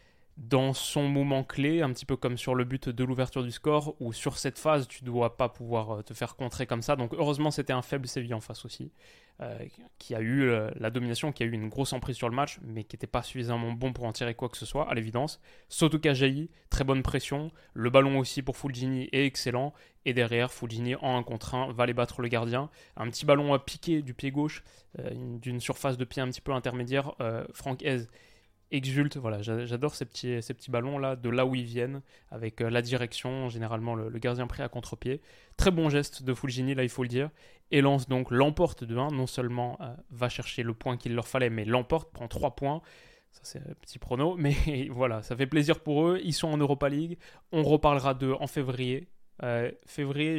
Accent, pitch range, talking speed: French, 120-145 Hz, 230 wpm